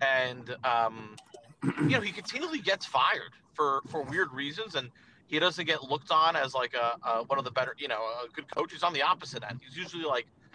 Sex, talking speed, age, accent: male, 220 wpm, 40-59, American